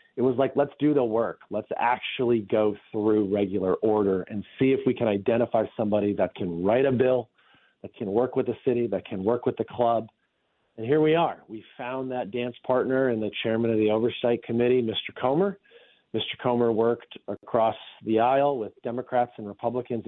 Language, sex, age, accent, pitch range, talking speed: English, male, 40-59, American, 115-135 Hz, 195 wpm